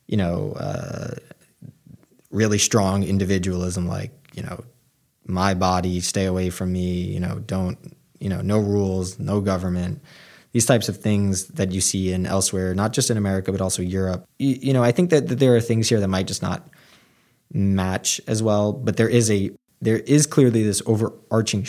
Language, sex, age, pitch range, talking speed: English, male, 20-39, 95-115 Hz, 185 wpm